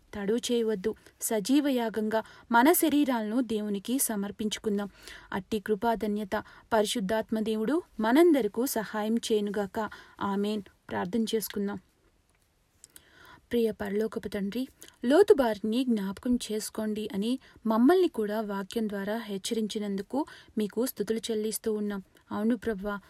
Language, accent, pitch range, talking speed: Telugu, native, 210-235 Hz, 85 wpm